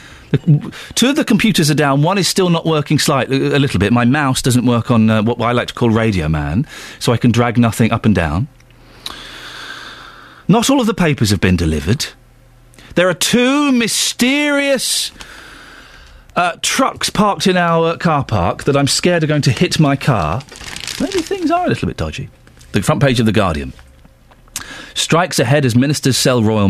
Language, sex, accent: English, male, British